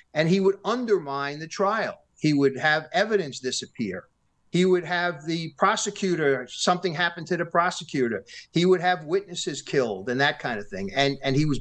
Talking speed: 180 wpm